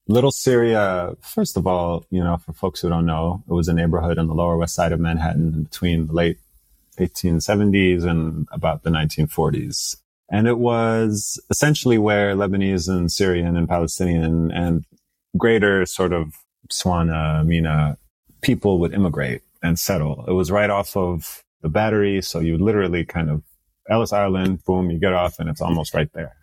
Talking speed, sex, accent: 170 wpm, male, American